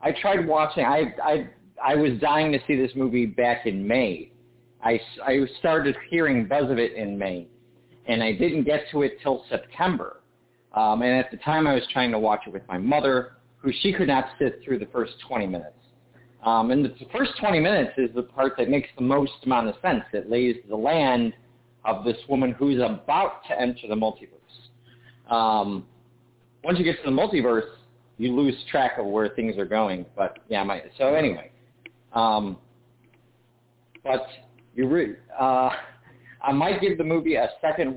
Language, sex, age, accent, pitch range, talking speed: English, male, 40-59, American, 115-135 Hz, 185 wpm